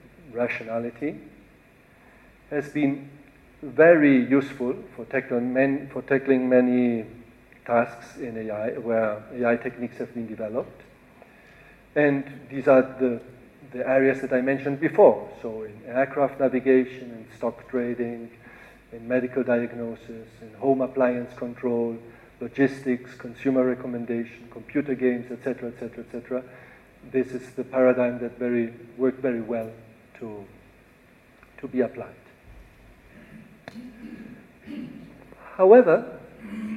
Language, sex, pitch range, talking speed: English, male, 120-140 Hz, 110 wpm